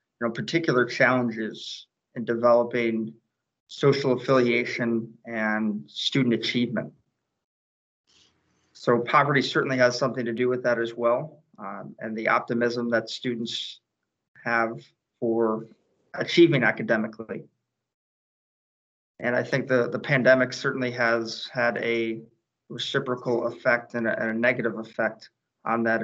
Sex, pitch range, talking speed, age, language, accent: male, 115-125 Hz, 115 wpm, 30-49, English, American